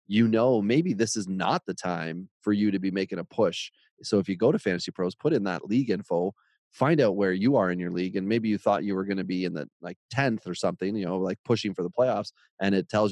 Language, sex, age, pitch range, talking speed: English, male, 30-49, 95-110 Hz, 275 wpm